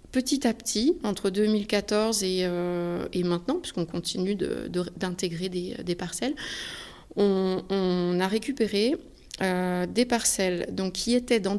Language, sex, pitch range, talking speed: French, female, 180-220 Hz, 145 wpm